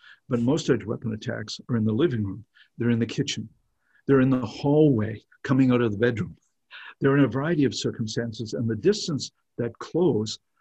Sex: male